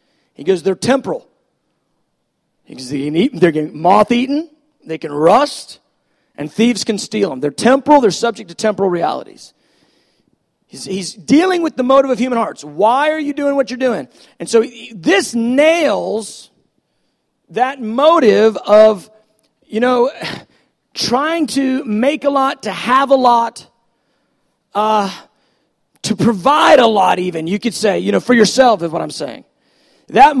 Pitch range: 210-265 Hz